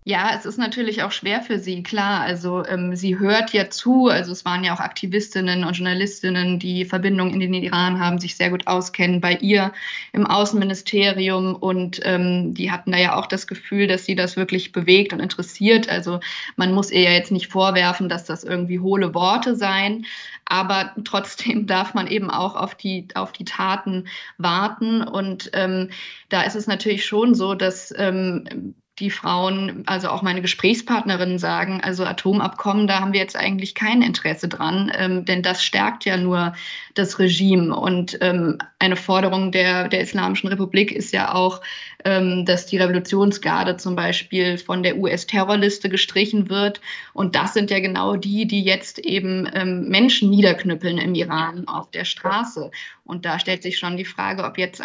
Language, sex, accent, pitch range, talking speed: German, female, German, 180-200 Hz, 175 wpm